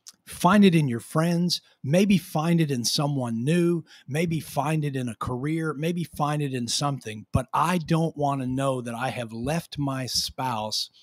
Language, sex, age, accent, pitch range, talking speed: English, male, 40-59, American, 120-155 Hz, 185 wpm